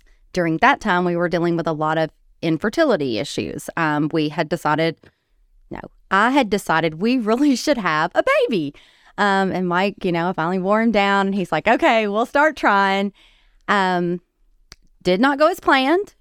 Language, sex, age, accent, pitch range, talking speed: English, female, 30-49, American, 155-205 Hz, 180 wpm